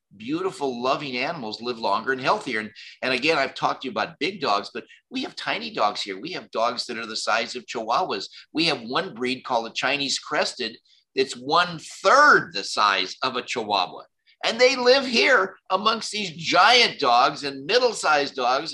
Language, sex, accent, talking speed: English, male, American, 190 wpm